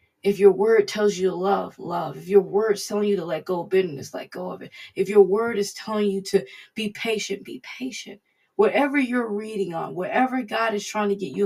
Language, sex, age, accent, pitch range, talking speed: English, female, 20-39, American, 170-205 Hz, 230 wpm